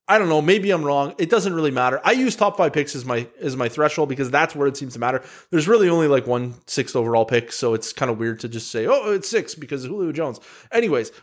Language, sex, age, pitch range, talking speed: English, male, 30-49, 175-265 Hz, 265 wpm